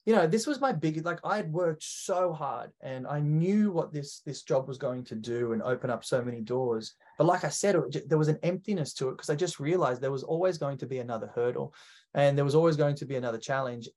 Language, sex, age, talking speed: English, male, 20-39, 260 wpm